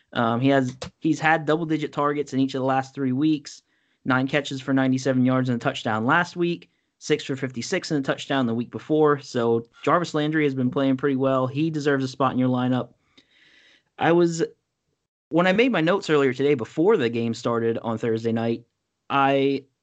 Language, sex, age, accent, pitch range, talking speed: English, male, 30-49, American, 130-155 Hz, 200 wpm